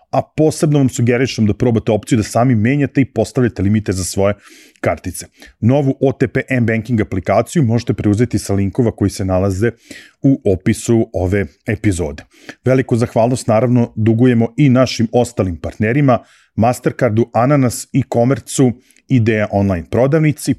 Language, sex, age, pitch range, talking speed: English, male, 40-59, 100-120 Hz, 135 wpm